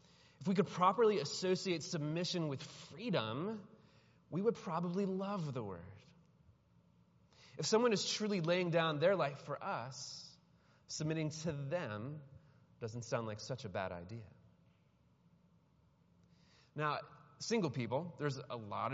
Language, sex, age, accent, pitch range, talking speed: English, male, 30-49, American, 120-165 Hz, 125 wpm